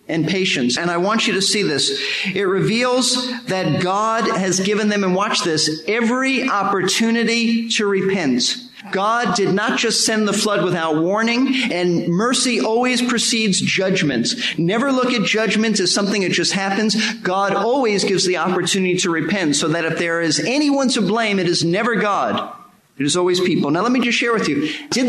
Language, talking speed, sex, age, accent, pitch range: English, 185 wpm, male, 40-59, American, 185-230 Hz